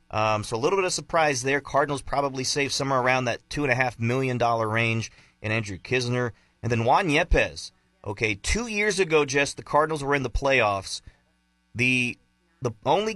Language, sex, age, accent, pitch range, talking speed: English, male, 30-49, American, 110-145 Hz, 175 wpm